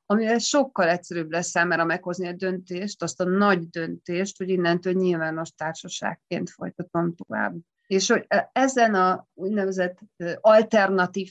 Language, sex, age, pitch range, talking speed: Hungarian, female, 50-69, 175-210 Hz, 125 wpm